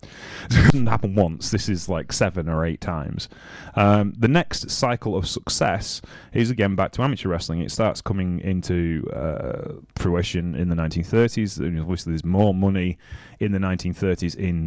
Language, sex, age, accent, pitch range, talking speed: English, male, 30-49, British, 85-105 Hz, 170 wpm